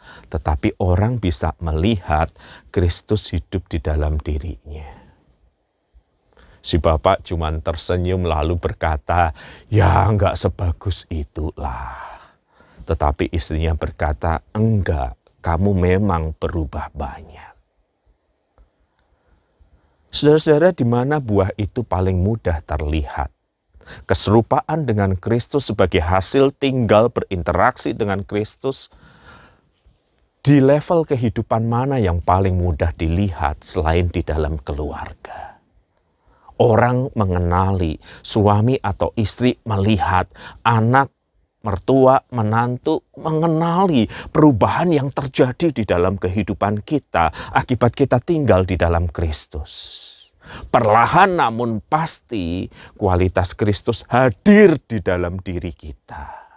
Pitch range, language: 80-115 Hz, Malay